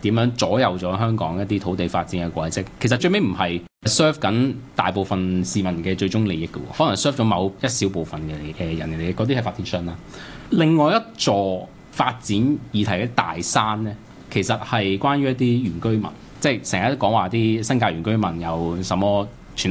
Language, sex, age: Chinese, male, 20-39